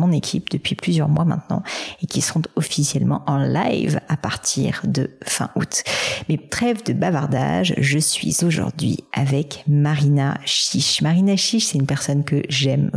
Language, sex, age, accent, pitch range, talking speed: French, female, 40-59, French, 145-180 Hz, 155 wpm